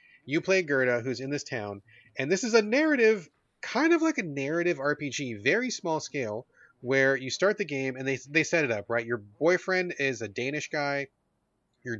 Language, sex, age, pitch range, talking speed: English, male, 30-49, 120-155 Hz, 200 wpm